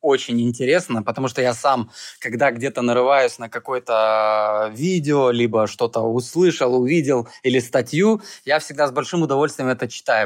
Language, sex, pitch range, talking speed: Russian, male, 120-155 Hz, 145 wpm